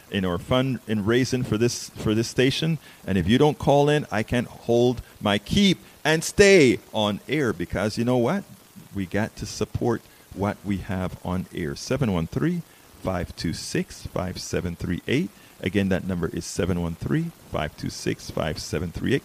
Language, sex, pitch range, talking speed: English, male, 95-135 Hz, 150 wpm